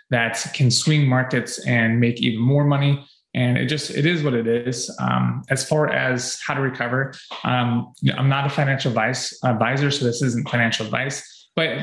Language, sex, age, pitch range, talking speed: English, male, 20-39, 120-145 Hz, 185 wpm